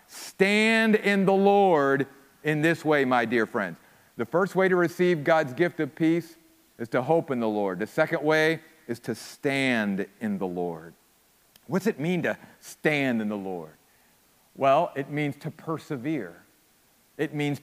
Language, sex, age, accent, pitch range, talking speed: English, male, 50-69, American, 150-210 Hz, 165 wpm